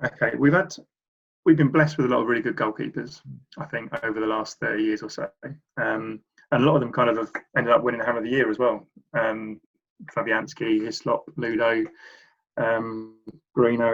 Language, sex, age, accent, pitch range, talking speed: English, male, 20-39, British, 110-145 Hz, 200 wpm